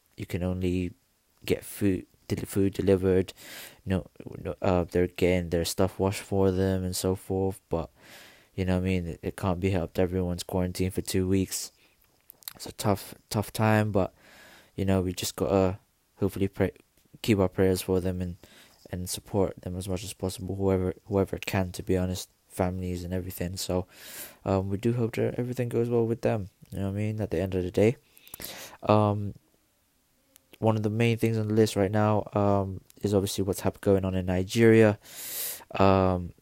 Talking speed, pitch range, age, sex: 190 wpm, 90-105 Hz, 20-39, male